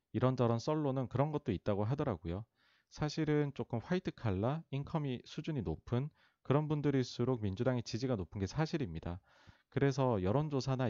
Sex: male